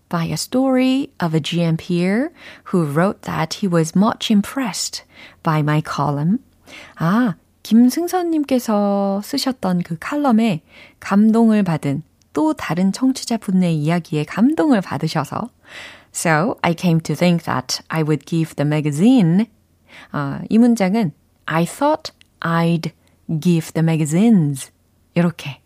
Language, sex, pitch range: Korean, female, 160-235 Hz